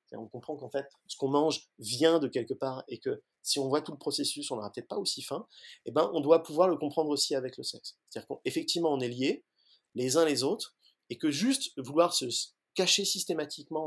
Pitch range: 125-165 Hz